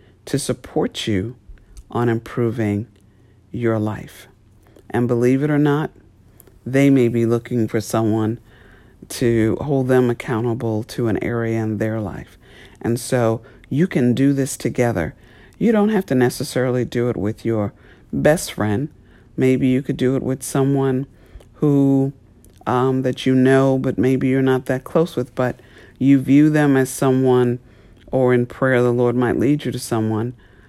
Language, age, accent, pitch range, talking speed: English, 50-69, American, 110-130 Hz, 160 wpm